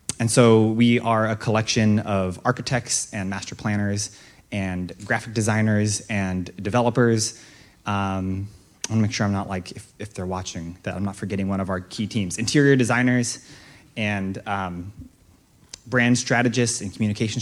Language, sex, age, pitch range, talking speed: English, male, 20-39, 100-115 Hz, 155 wpm